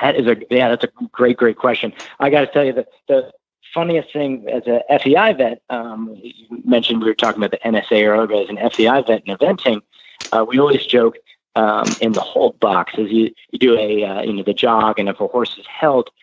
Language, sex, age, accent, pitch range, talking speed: English, male, 40-59, American, 105-140 Hz, 235 wpm